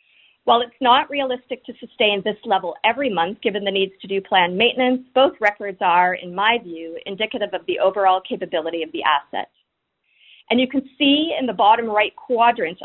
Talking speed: 185 wpm